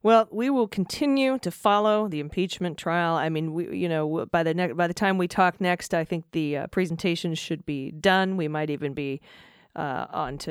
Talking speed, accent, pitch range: 215 wpm, American, 160-190 Hz